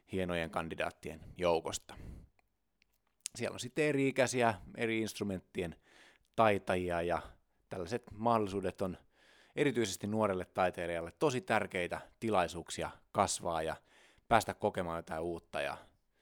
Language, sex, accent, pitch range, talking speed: Finnish, male, native, 85-110 Hz, 100 wpm